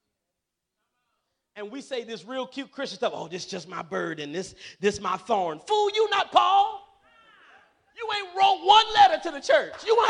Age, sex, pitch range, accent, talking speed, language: 40-59, male, 245-375 Hz, American, 195 wpm, English